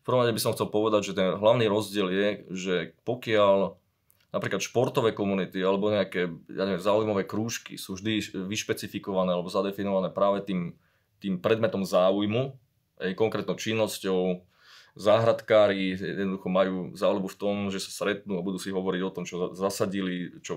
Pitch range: 95-120 Hz